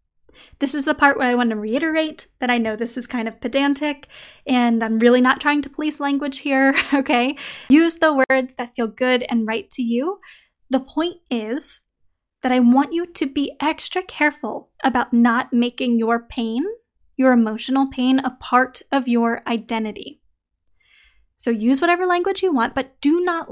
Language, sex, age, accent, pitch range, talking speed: English, female, 10-29, American, 240-290 Hz, 180 wpm